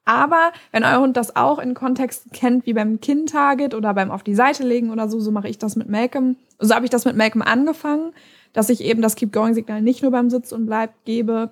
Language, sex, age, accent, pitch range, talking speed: German, female, 20-39, German, 215-255 Hz, 240 wpm